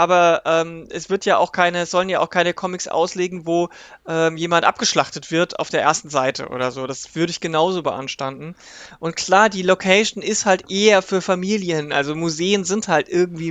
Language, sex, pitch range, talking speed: German, male, 165-195 Hz, 180 wpm